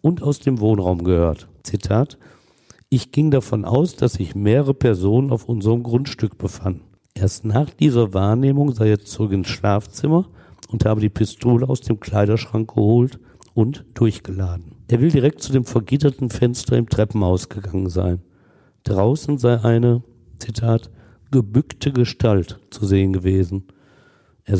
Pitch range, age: 100-130 Hz, 50-69